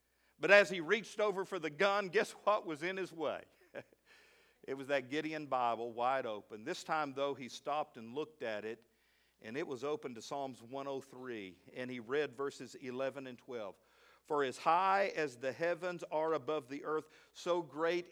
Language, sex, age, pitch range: English, male, 50-69, 145-200 Hz